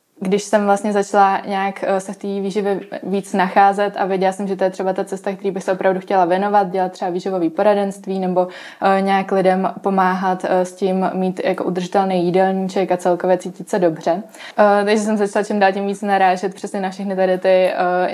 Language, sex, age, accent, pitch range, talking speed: Czech, female, 20-39, native, 180-195 Hz, 205 wpm